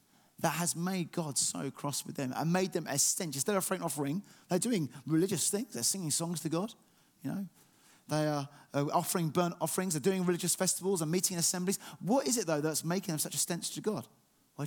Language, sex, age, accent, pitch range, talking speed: English, male, 30-49, British, 150-190 Hz, 215 wpm